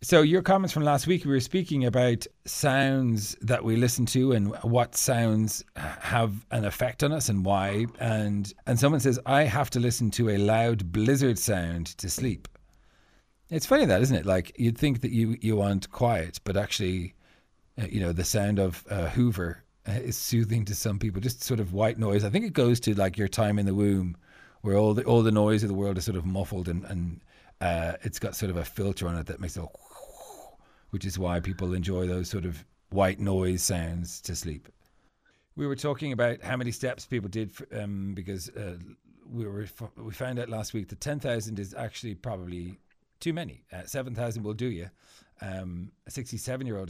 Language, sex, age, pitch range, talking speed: English, male, 40-59, 95-120 Hz, 205 wpm